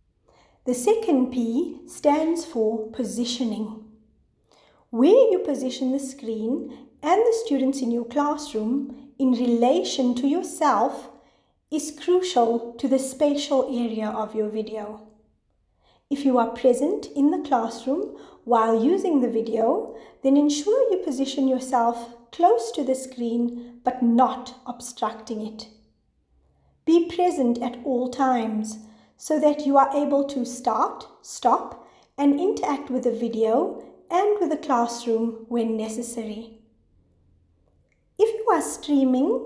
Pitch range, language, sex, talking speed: 230-285 Hz, English, female, 125 wpm